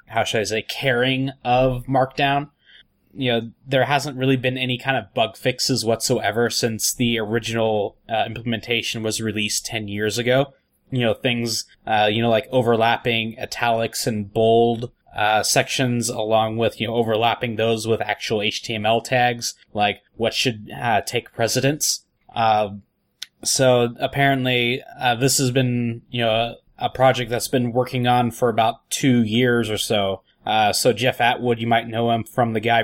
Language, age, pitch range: English, 20-39, 110-125 Hz